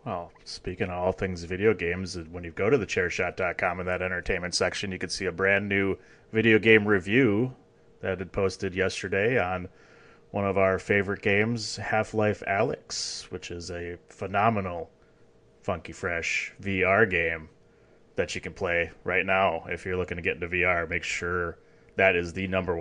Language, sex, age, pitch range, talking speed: English, male, 30-49, 90-105 Hz, 170 wpm